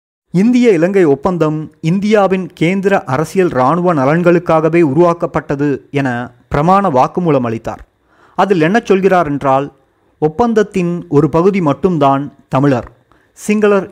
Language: Tamil